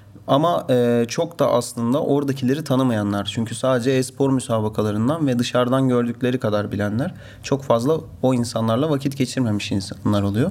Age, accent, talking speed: 30-49, native, 130 wpm